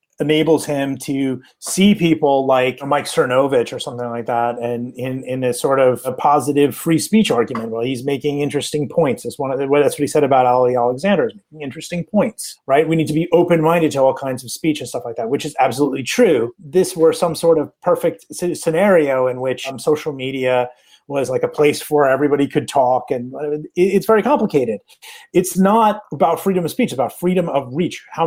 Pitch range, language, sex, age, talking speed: 130-170 Hz, English, male, 30-49, 200 wpm